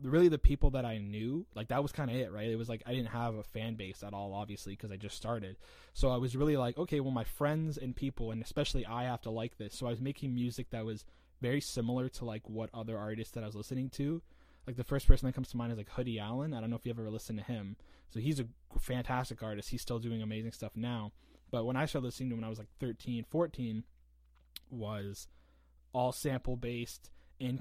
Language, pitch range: English, 105-130 Hz